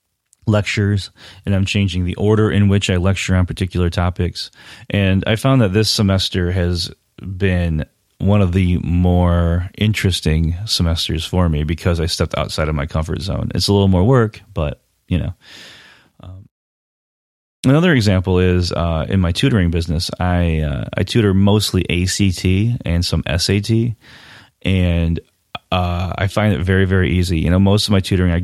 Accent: American